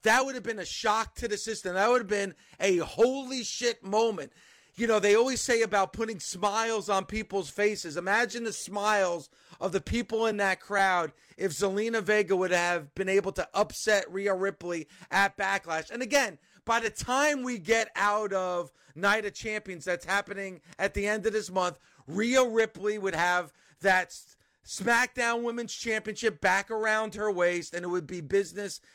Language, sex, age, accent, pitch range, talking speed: English, male, 40-59, American, 185-220 Hz, 180 wpm